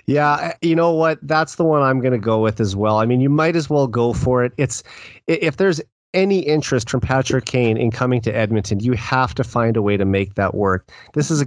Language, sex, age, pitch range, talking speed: English, male, 30-49, 110-135 Hz, 250 wpm